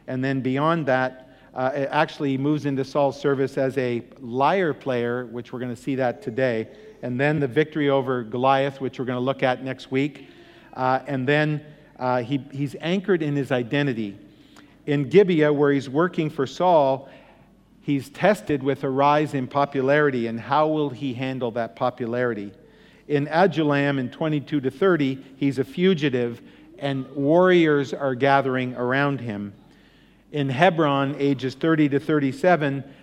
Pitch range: 130-150 Hz